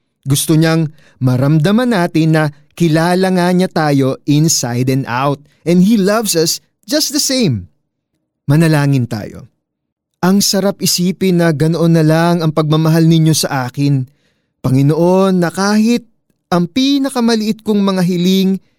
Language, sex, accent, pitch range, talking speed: Filipino, male, native, 135-185 Hz, 130 wpm